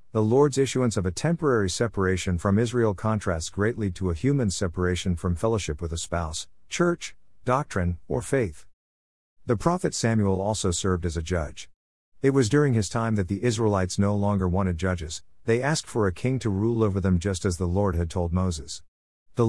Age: 50-69